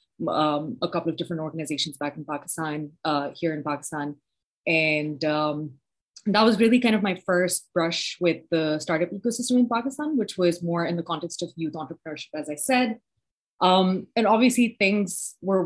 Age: 20-39